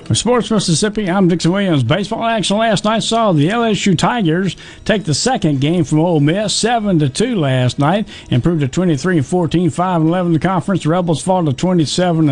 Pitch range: 145-185 Hz